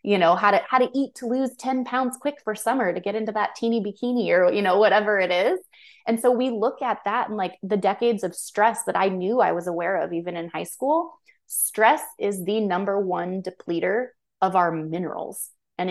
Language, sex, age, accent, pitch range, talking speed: English, female, 20-39, American, 170-210 Hz, 225 wpm